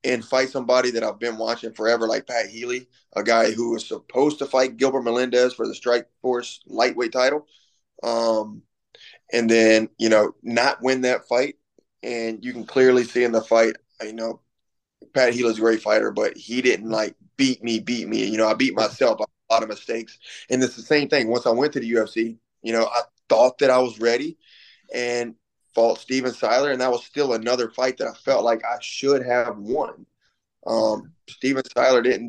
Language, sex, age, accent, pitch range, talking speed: English, male, 20-39, American, 115-130 Hz, 205 wpm